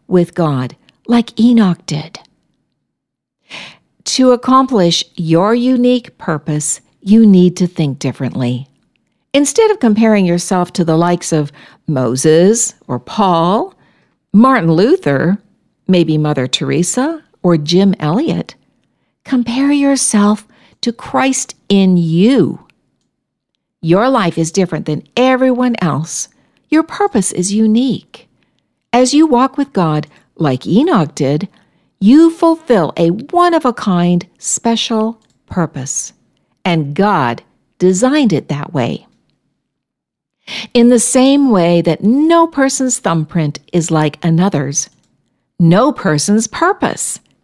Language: English